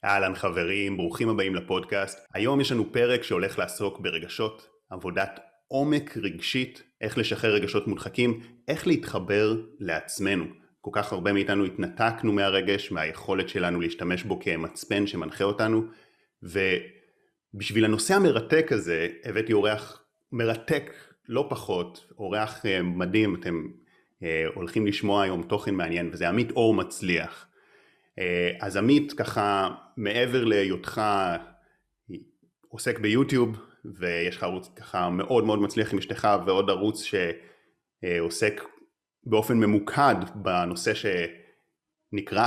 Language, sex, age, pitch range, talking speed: Hebrew, male, 30-49, 90-115 Hz, 110 wpm